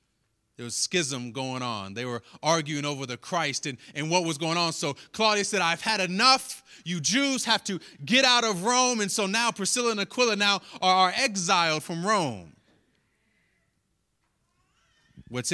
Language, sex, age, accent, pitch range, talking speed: English, male, 30-49, American, 130-175 Hz, 170 wpm